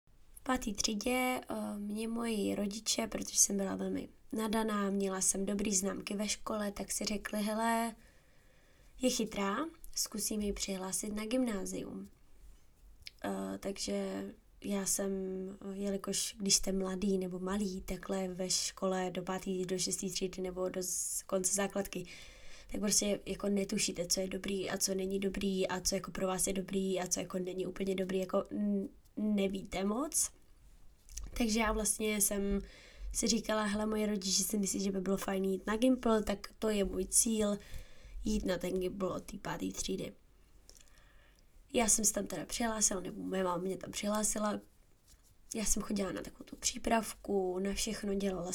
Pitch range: 190-215 Hz